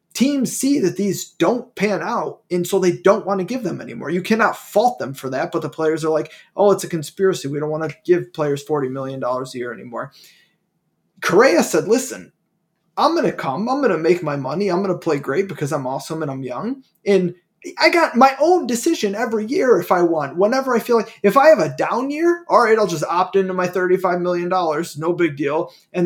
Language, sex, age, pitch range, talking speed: English, male, 20-39, 155-220 Hz, 230 wpm